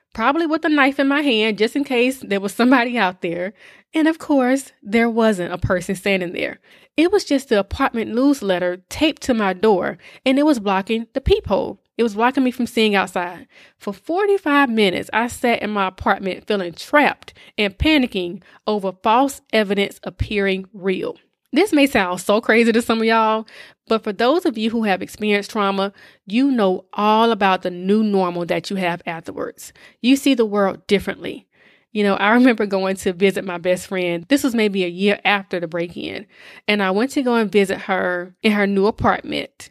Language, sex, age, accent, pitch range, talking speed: English, female, 20-39, American, 195-255 Hz, 195 wpm